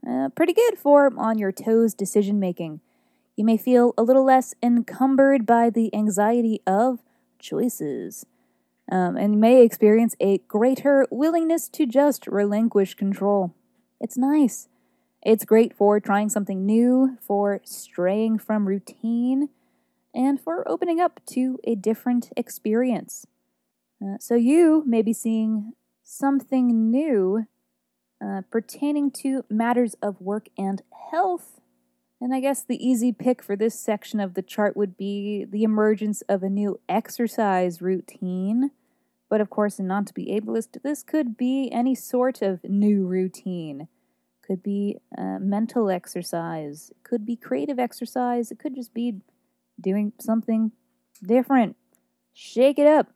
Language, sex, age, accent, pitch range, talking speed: English, female, 20-39, American, 195-250 Hz, 135 wpm